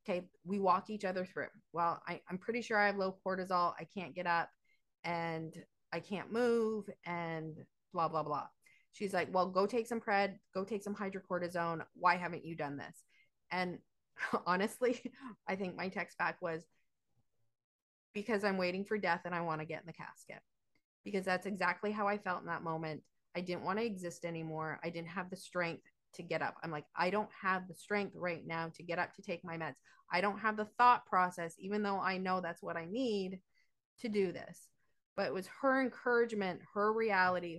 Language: English